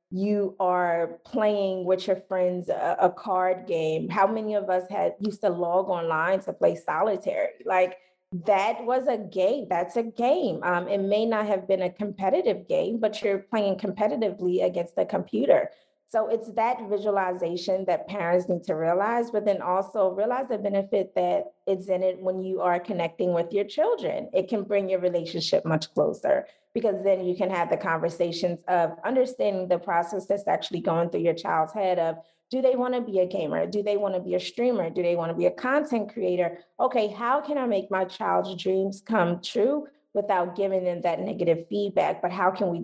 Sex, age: female, 20-39